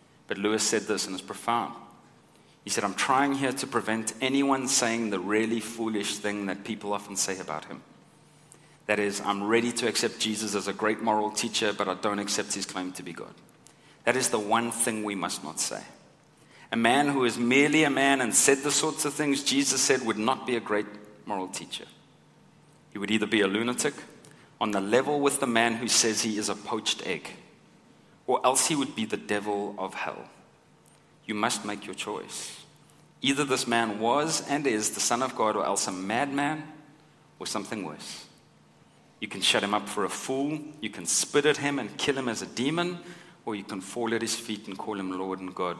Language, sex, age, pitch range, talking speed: English, male, 30-49, 100-135 Hz, 210 wpm